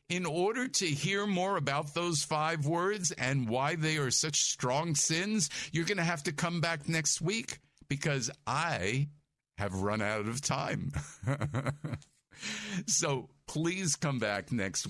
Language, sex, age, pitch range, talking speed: English, male, 50-69, 115-155 Hz, 150 wpm